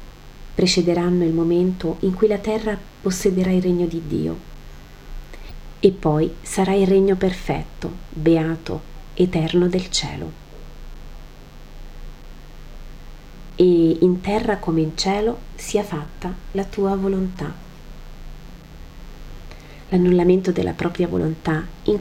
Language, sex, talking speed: Italian, female, 105 wpm